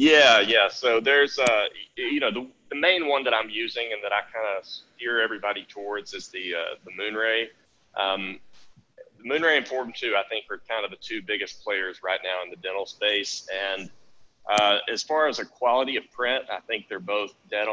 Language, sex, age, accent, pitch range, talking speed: English, male, 30-49, American, 100-135 Hz, 210 wpm